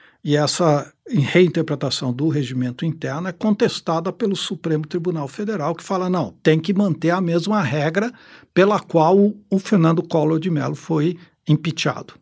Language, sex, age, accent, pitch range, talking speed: Portuguese, male, 60-79, Brazilian, 135-180 Hz, 150 wpm